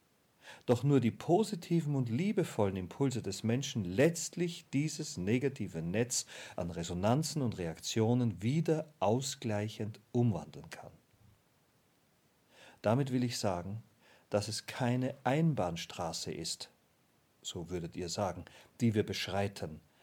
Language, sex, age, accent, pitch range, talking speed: German, male, 40-59, German, 100-140 Hz, 110 wpm